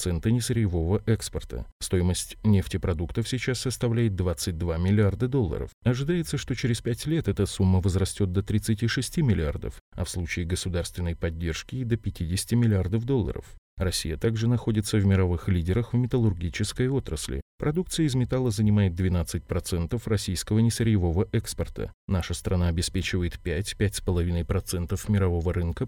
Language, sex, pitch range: Russian, male, 90-115 Hz